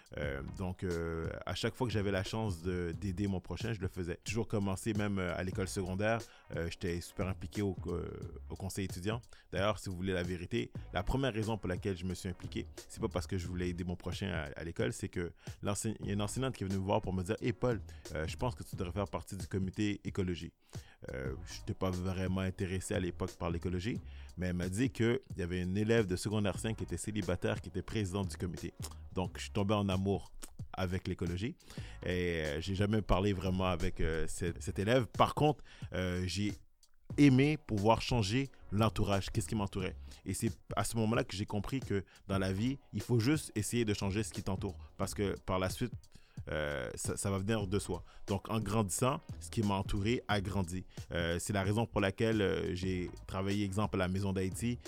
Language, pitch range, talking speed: English, 90-110 Hz, 220 wpm